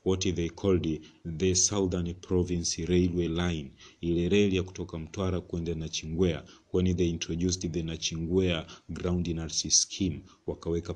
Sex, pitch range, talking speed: male, 85-95 Hz, 140 wpm